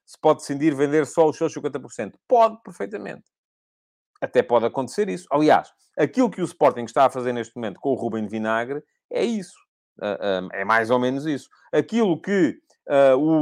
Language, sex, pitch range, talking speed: Portuguese, male, 130-195 Hz, 175 wpm